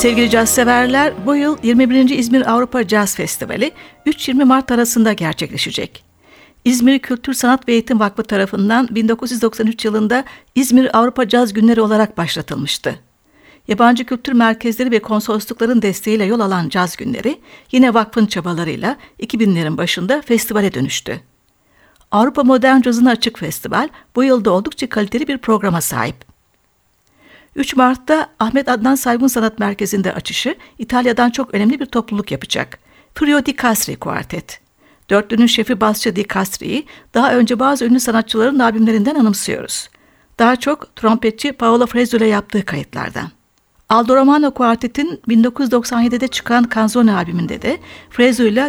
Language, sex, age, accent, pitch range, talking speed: Turkish, female, 60-79, native, 215-255 Hz, 130 wpm